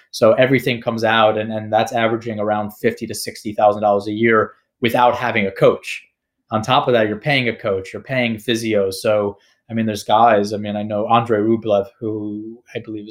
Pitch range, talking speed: 105-120 Hz, 195 wpm